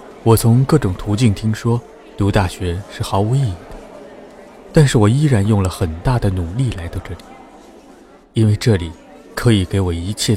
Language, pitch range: Chinese, 95-125 Hz